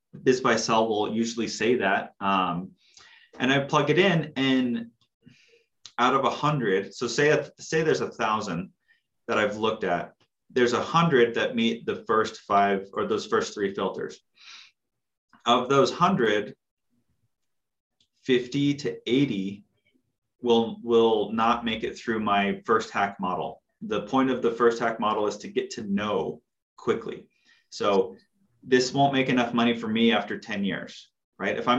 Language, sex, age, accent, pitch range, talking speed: English, male, 30-49, American, 100-125 Hz, 155 wpm